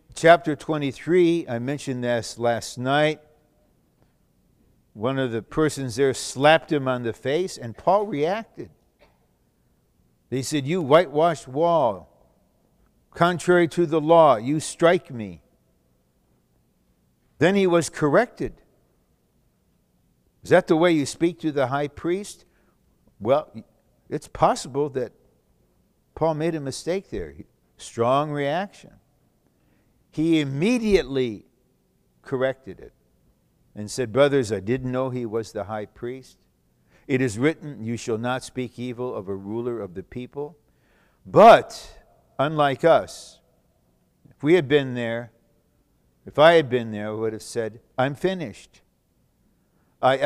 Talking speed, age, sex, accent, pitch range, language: 125 wpm, 60-79, male, American, 115-155 Hz, English